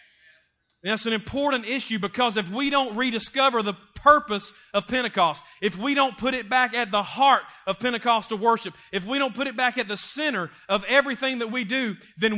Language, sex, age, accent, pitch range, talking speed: English, male, 30-49, American, 210-255 Hz, 195 wpm